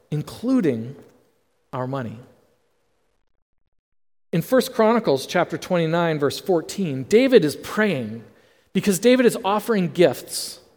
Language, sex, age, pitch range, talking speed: English, male, 40-59, 140-210 Hz, 100 wpm